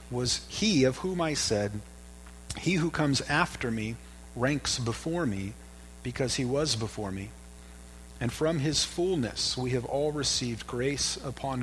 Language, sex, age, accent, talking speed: English, male, 40-59, American, 150 wpm